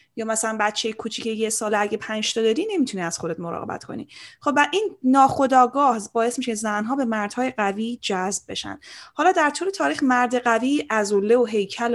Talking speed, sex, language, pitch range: 175 wpm, female, Persian, 195-255 Hz